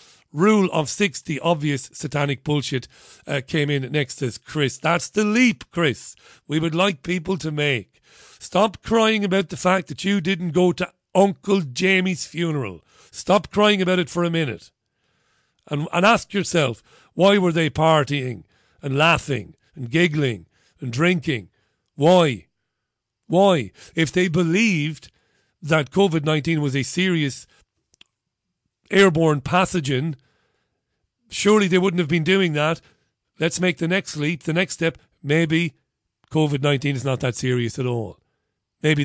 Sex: male